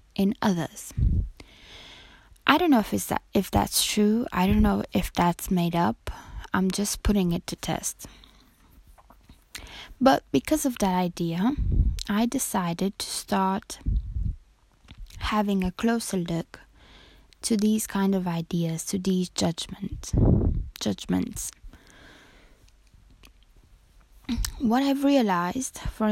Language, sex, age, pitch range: English, female, 20-39, 165-215 Hz